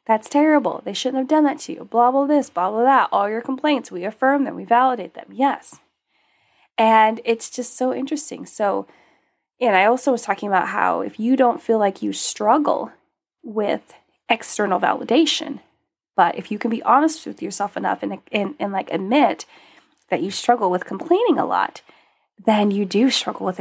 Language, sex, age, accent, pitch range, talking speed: English, female, 20-39, American, 215-280 Hz, 185 wpm